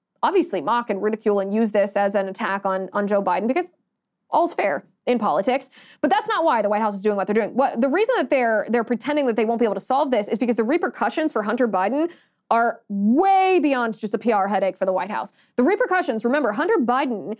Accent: American